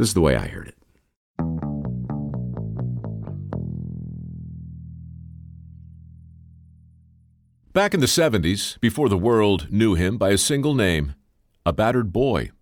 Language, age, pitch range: English, 50-69, 80-120 Hz